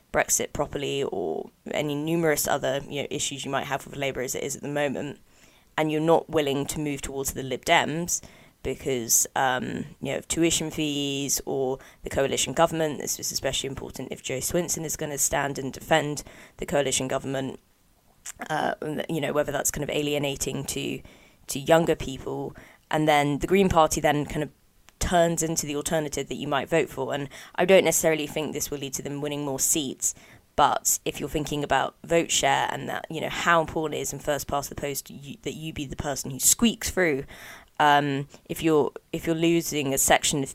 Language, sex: English, female